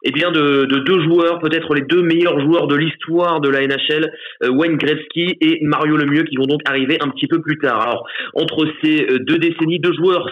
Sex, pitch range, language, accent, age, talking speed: male, 135-170 Hz, French, French, 30-49, 215 wpm